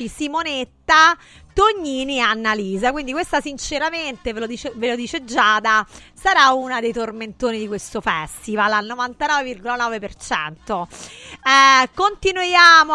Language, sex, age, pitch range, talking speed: Italian, female, 30-49, 220-295 Hz, 115 wpm